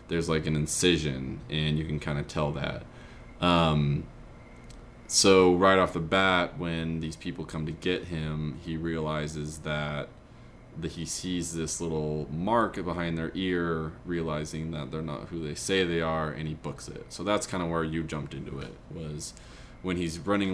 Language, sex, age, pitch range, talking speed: English, male, 20-39, 75-90 Hz, 180 wpm